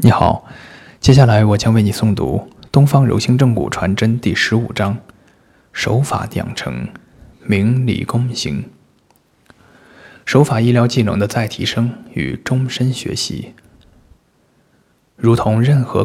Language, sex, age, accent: Chinese, male, 20-39, native